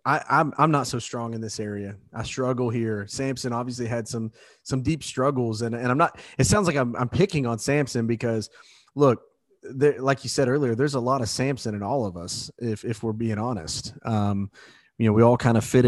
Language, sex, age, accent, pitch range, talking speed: English, male, 30-49, American, 110-130 Hz, 220 wpm